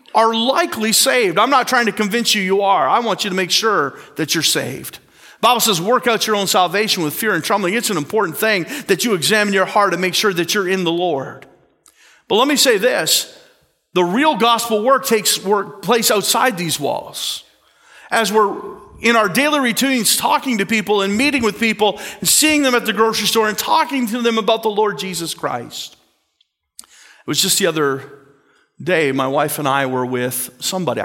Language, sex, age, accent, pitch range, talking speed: English, male, 40-59, American, 145-225 Hz, 205 wpm